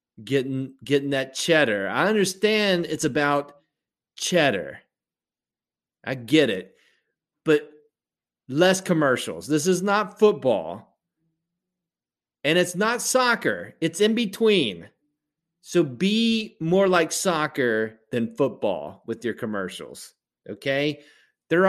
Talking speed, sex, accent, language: 105 wpm, male, American, English